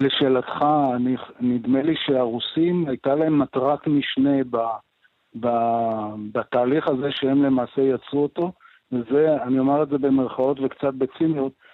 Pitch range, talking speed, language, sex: 125-150 Hz, 125 wpm, Hebrew, male